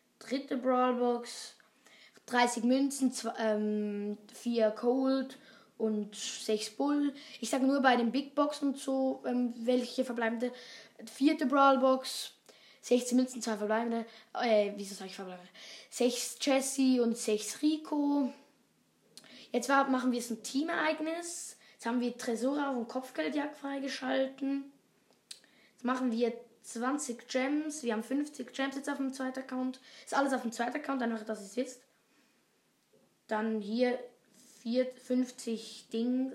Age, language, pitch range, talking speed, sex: 20-39, German, 225-265 Hz, 135 wpm, female